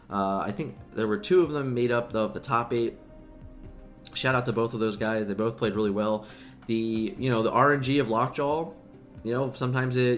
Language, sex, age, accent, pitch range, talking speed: English, male, 20-39, American, 105-130 Hz, 220 wpm